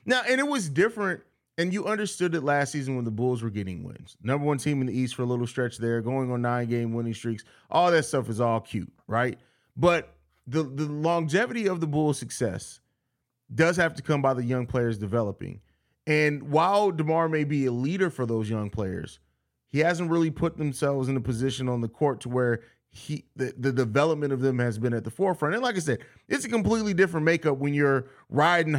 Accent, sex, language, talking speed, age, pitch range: American, male, English, 215 wpm, 30-49, 125-165 Hz